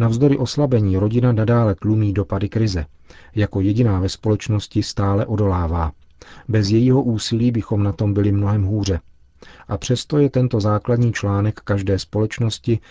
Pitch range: 95-115 Hz